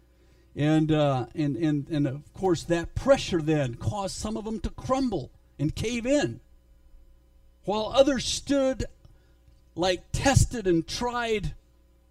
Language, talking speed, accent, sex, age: English, 130 wpm, American, male, 50-69